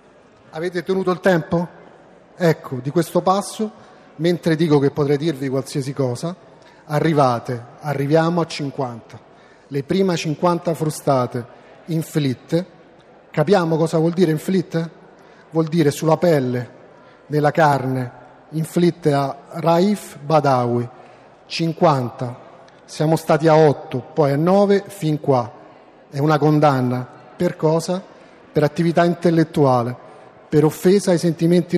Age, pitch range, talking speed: 40-59, 135-170 Hz, 115 wpm